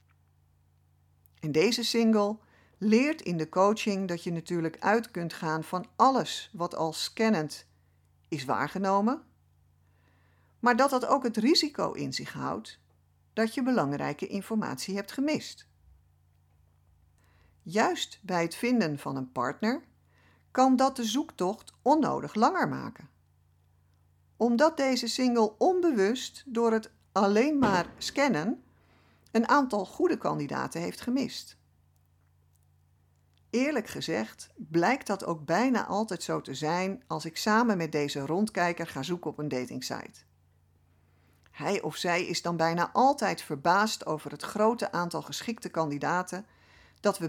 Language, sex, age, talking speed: Dutch, female, 50-69, 130 wpm